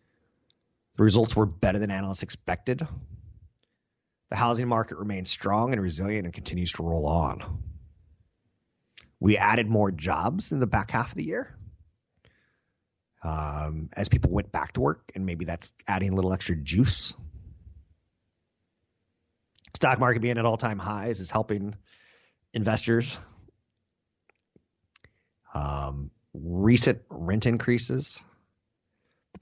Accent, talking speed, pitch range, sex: American, 120 wpm, 85-110 Hz, male